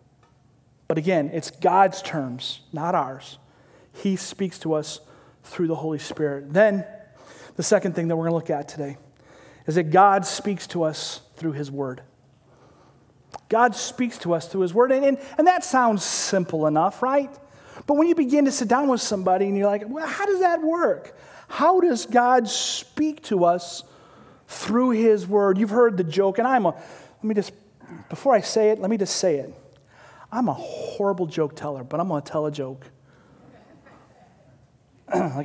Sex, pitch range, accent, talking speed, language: male, 165-245 Hz, American, 180 wpm, English